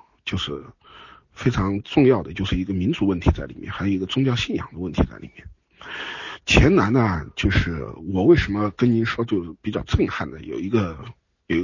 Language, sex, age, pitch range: Chinese, male, 50-69, 90-130 Hz